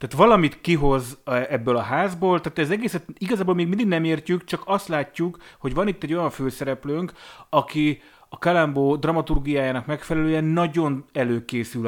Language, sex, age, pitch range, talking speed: Hungarian, male, 30-49, 120-160 Hz, 150 wpm